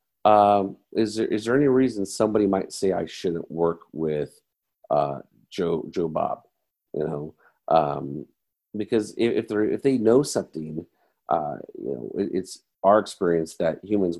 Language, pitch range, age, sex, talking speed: English, 80-95 Hz, 50-69, male, 160 wpm